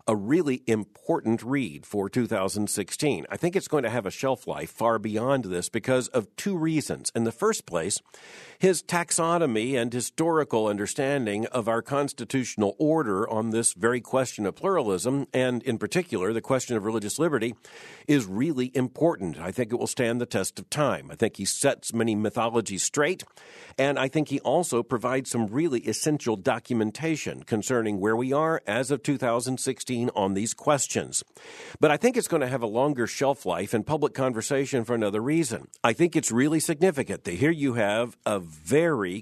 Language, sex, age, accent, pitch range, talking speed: English, male, 50-69, American, 115-145 Hz, 175 wpm